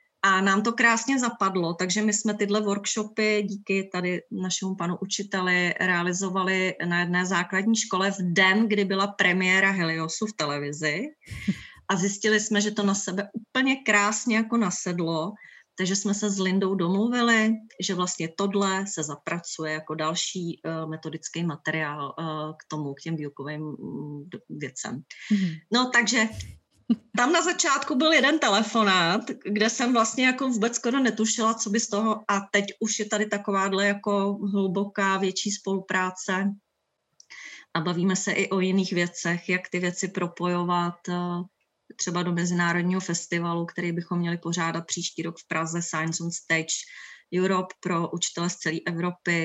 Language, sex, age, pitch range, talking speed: Czech, female, 30-49, 170-210 Hz, 145 wpm